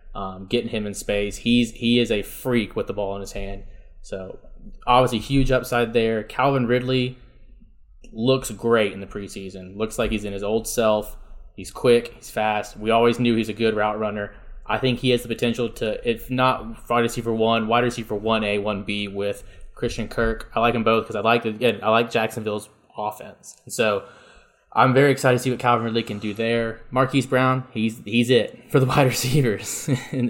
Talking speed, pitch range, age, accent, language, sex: 200 wpm, 105-125 Hz, 20-39, American, English, male